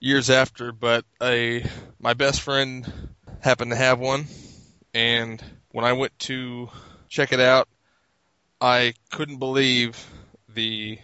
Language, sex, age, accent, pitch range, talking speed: English, male, 20-39, American, 110-130 Hz, 120 wpm